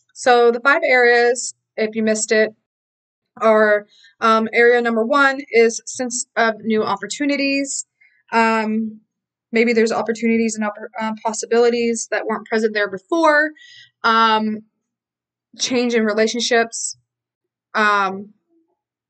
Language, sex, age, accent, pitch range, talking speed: English, female, 20-39, American, 205-240 Hz, 115 wpm